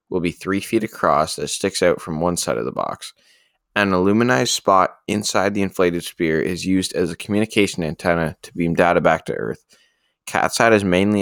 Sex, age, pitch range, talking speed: male, 20-39, 85-105 Hz, 195 wpm